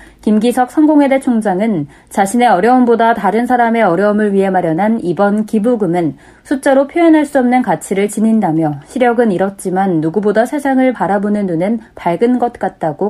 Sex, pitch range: female, 195-265 Hz